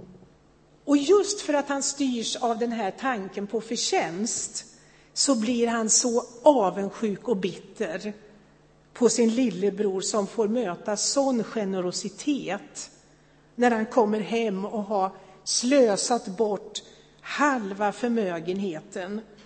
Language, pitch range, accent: Swedish, 200-255 Hz, native